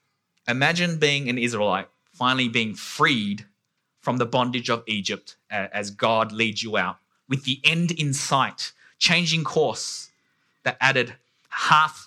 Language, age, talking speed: English, 20-39, 135 wpm